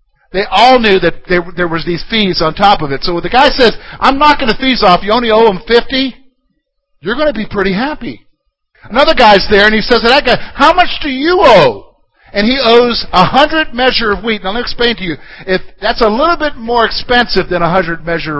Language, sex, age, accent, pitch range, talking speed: English, male, 50-69, American, 200-285 Hz, 230 wpm